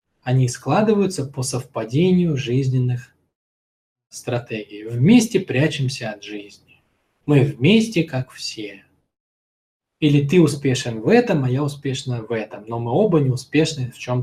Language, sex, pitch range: Russian, male, 120-145 Hz